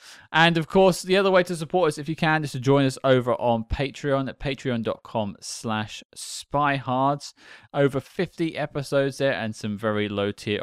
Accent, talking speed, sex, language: British, 175 wpm, male, English